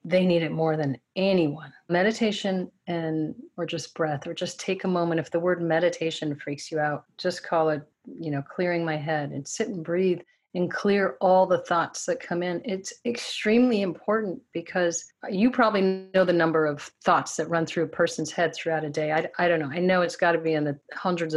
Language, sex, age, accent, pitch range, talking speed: English, female, 30-49, American, 160-190 Hz, 215 wpm